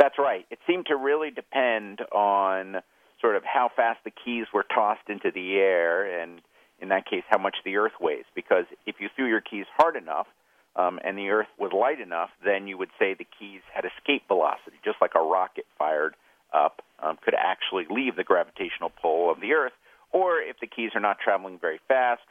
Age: 50-69